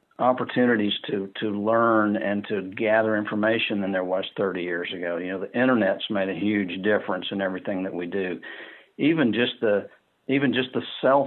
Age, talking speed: 50-69, 180 wpm